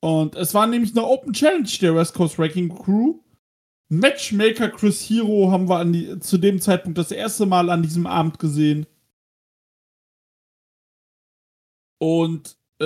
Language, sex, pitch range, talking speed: German, male, 170-225 Hz, 145 wpm